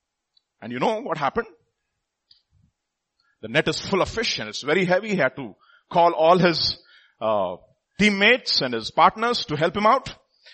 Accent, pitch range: Indian, 140-215 Hz